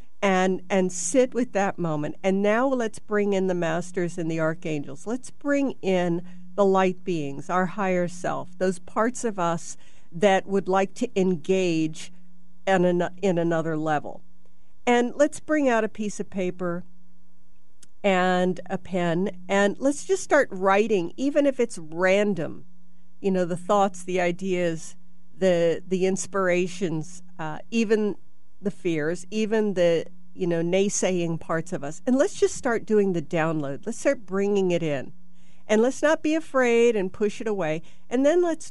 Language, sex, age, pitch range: English, female, 50-69, 175-215 Hz